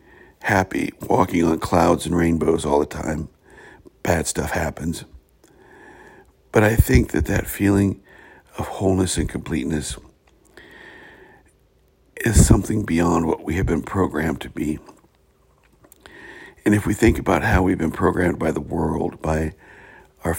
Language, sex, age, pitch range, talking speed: English, male, 60-79, 80-95 Hz, 135 wpm